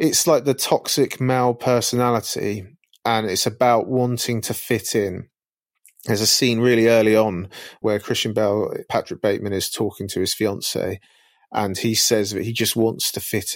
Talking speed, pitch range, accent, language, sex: 170 wpm, 105-120 Hz, British, English, male